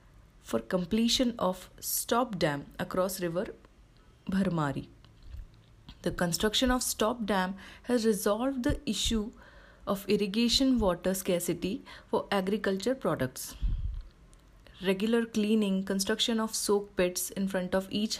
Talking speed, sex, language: 110 wpm, female, Hindi